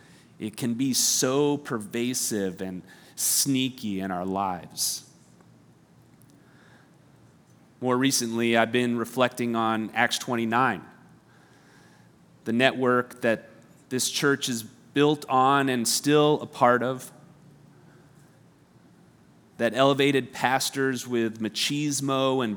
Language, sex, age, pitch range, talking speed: English, male, 30-49, 120-140 Hz, 100 wpm